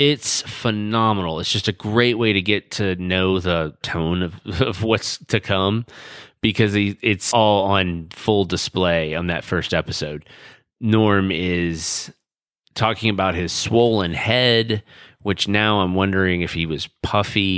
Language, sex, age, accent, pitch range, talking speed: English, male, 30-49, American, 85-110 Hz, 145 wpm